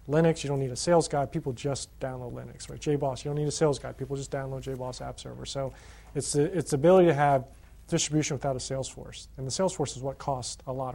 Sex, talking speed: male, 250 wpm